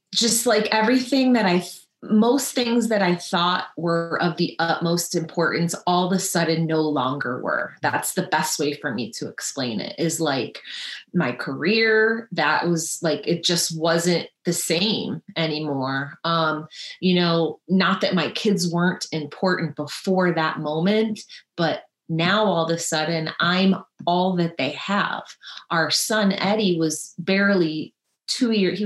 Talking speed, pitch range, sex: 155 wpm, 160-205 Hz, female